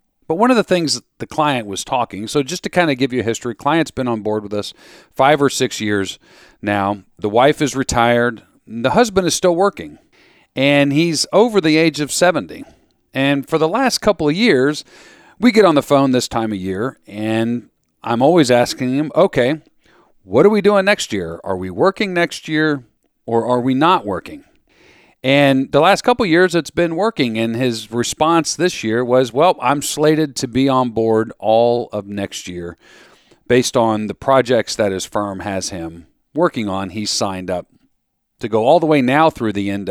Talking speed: 200 wpm